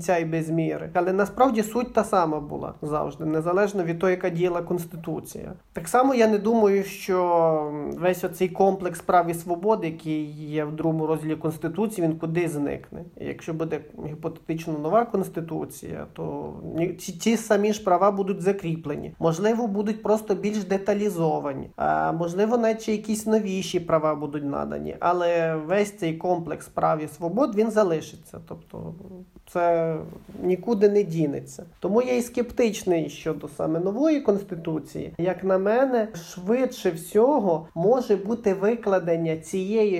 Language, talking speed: Ukrainian, 140 wpm